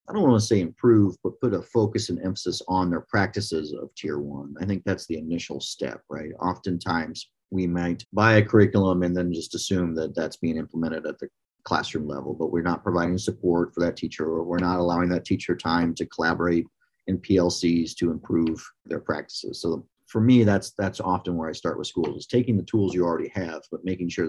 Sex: male